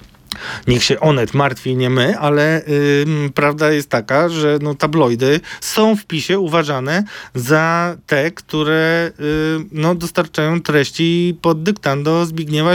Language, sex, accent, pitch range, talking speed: Polish, male, native, 130-165 Hz, 130 wpm